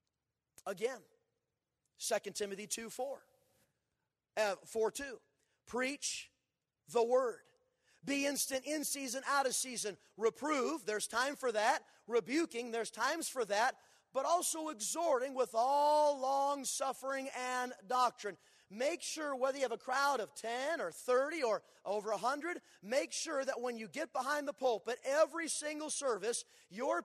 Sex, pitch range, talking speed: male, 245-335 Hz, 140 wpm